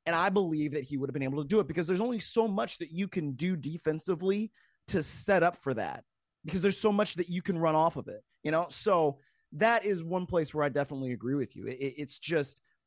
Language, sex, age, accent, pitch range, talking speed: English, male, 30-49, American, 145-185 Hz, 245 wpm